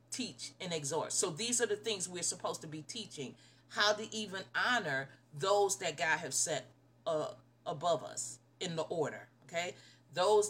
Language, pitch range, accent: English, 150-210 Hz, American